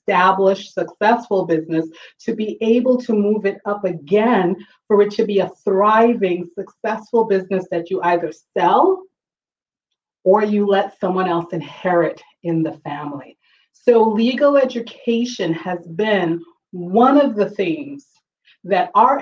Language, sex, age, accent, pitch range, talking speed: English, female, 30-49, American, 175-235 Hz, 135 wpm